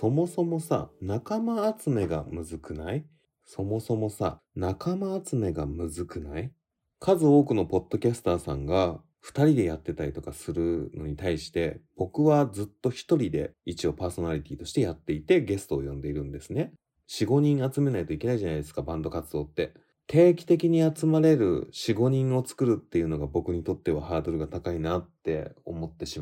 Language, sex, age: Japanese, male, 30-49